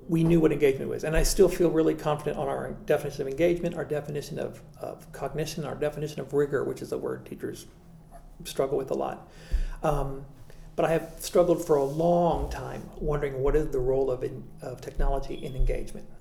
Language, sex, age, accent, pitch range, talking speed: English, male, 50-69, American, 140-165 Hz, 195 wpm